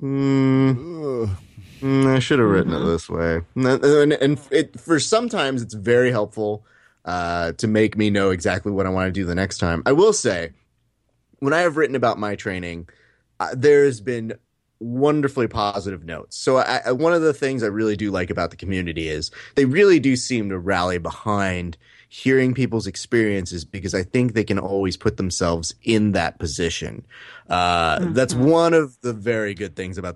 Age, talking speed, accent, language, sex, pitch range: 30-49, 185 wpm, American, English, male, 95-130 Hz